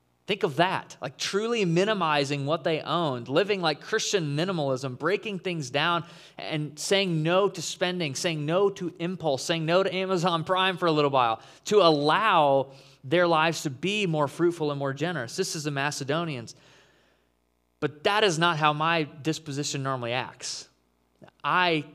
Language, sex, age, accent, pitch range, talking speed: English, male, 20-39, American, 140-185 Hz, 160 wpm